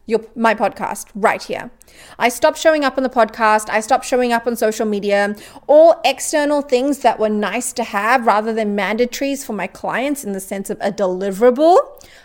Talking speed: 190 wpm